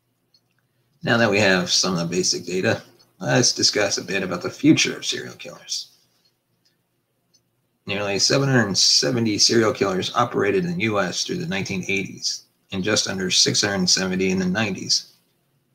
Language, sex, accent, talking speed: English, male, American, 140 wpm